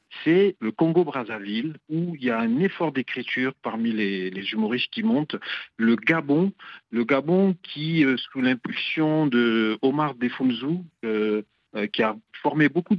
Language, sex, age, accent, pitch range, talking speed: French, male, 50-69, French, 110-160 Hz, 150 wpm